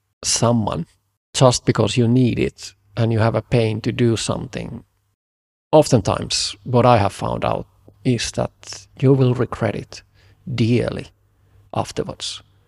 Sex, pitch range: male, 100-125 Hz